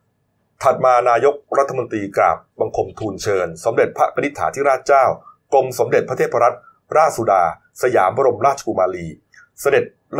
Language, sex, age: Thai, male, 30-49